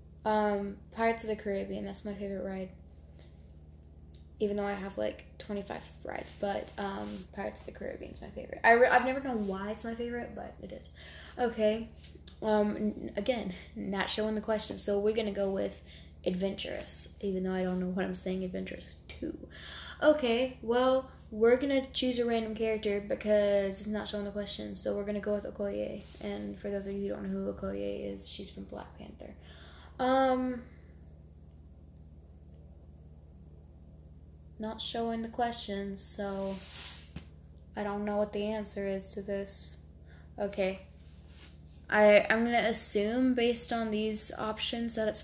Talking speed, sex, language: 165 wpm, female, English